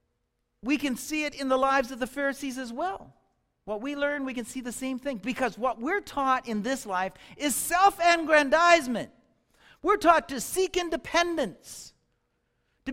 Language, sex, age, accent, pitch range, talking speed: English, male, 50-69, American, 190-285 Hz, 165 wpm